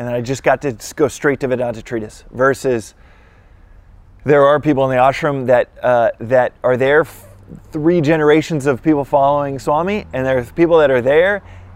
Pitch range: 115-140 Hz